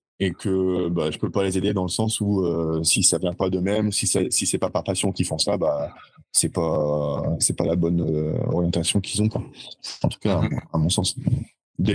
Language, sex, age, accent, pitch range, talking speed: French, male, 20-39, French, 85-100 Hz, 245 wpm